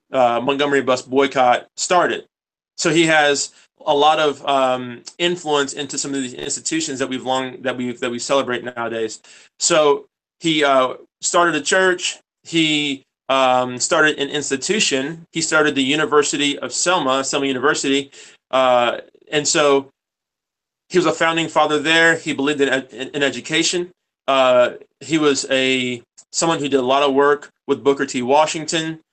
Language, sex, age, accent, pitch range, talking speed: English, male, 20-39, American, 130-155 Hz, 155 wpm